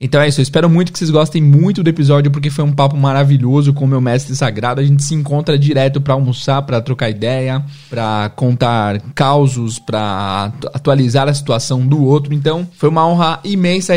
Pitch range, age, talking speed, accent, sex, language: 135-165 Hz, 20-39, 200 wpm, Brazilian, male, Portuguese